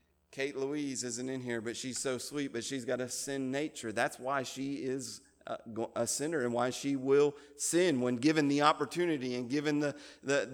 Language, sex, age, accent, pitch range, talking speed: English, male, 40-59, American, 130-180 Hz, 195 wpm